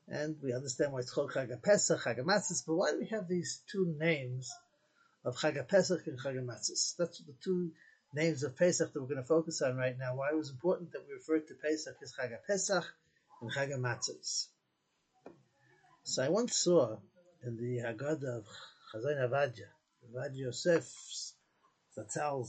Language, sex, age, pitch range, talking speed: English, male, 50-69, 130-175 Hz, 160 wpm